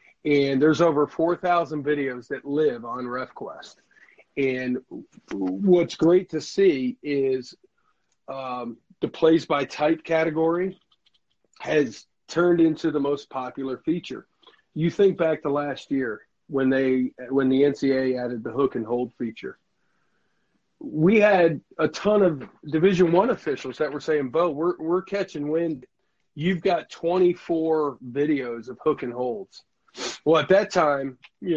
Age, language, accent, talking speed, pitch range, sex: 40-59, English, American, 140 wpm, 135-170 Hz, male